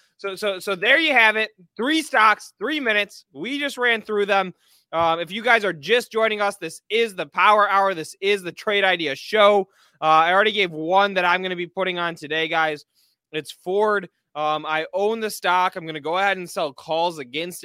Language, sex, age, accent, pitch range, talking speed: English, male, 20-39, American, 145-200 Hz, 220 wpm